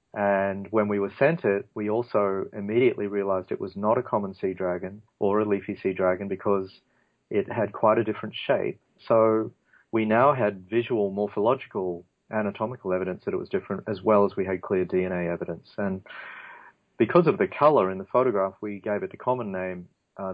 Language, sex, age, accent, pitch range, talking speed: English, male, 40-59, Australian, 95-110 Hz, 190 wpm